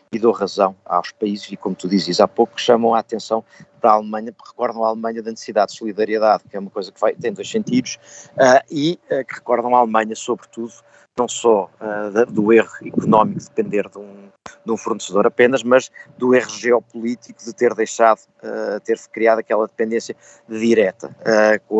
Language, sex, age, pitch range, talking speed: Portuguese, male, 50-69, 110-120 Hz, 180 wpm